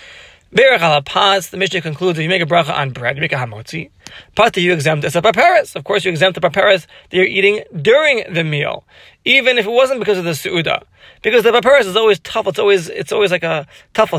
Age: 20-39